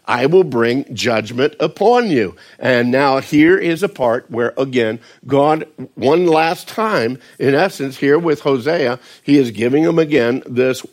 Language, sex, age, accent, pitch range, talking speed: English, male, 50-69, American, 130-165 Hz, 160 wpm